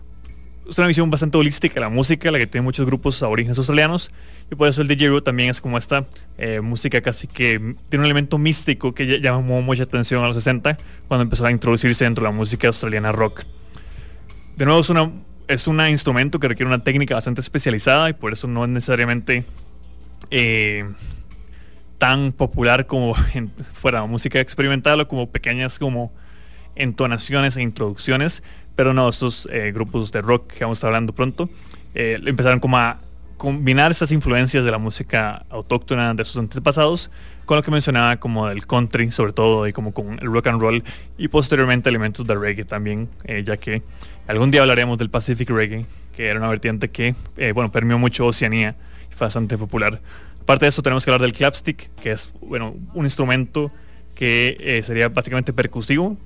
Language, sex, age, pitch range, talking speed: English, male, 20-39, 110-135 Hz, 185 wpm